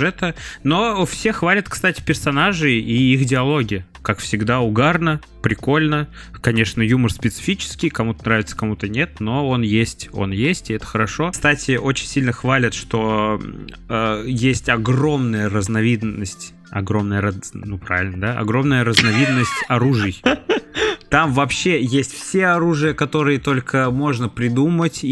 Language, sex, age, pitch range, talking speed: Russian, male, 20-39, 115-160 Hz, 130 wpm